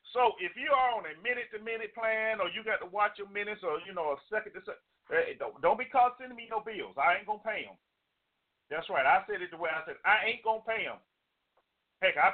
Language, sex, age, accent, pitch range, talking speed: English, male, 40-59, American, 185-240 Hz, 265 wpm